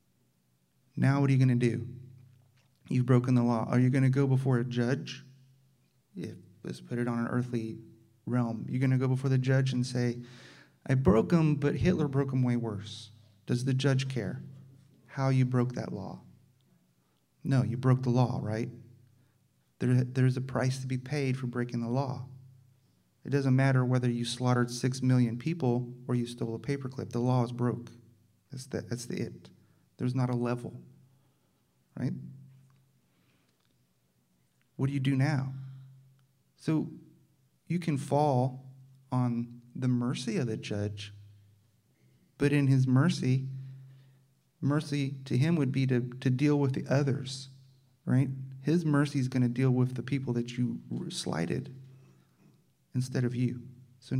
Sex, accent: male, American